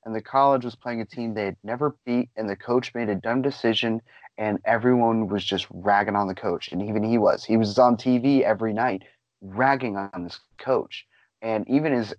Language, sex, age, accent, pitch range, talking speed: English, male, 30-49, American, 110-140 Hz, 210 wpm